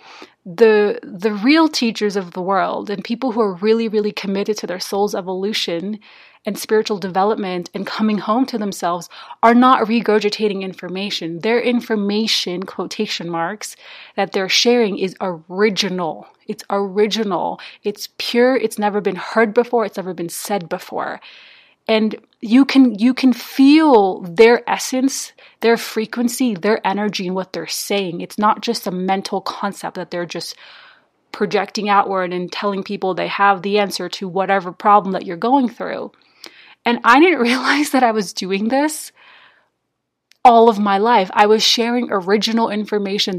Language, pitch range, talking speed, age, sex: English, 195-230 Hz, 155 wpm, 30-49, female